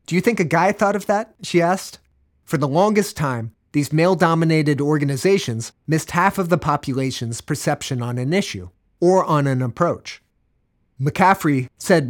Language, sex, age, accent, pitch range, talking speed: English, male, 30-49, American, 130-175 Hz, 160 wpm